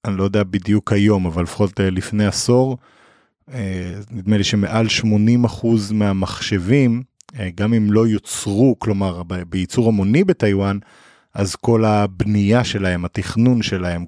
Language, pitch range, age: Hebrew, 95-110 Hz, 30-49